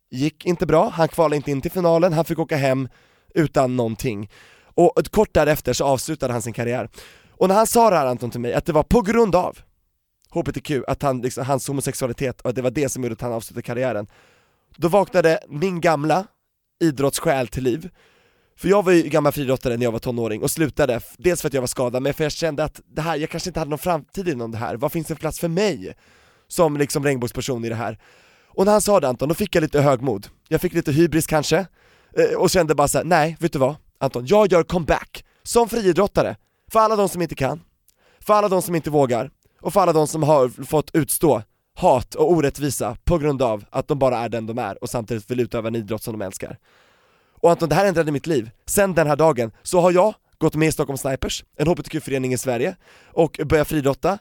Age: 20-39